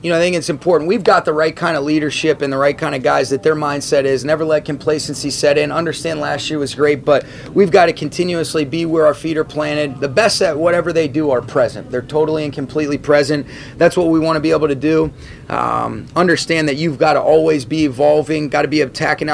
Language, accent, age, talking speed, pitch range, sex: English, American, 30-49, 245 wpm, 140-155 Hz, male